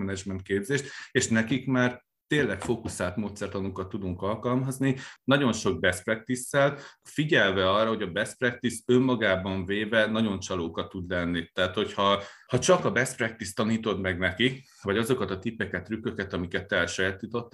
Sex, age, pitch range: male, 30-49, 95-120 Hz